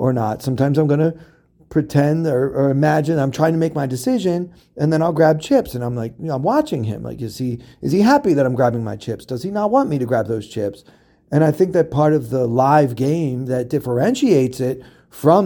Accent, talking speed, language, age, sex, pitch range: American, 230 wpm, English, 40-59, male, 120-150 Hz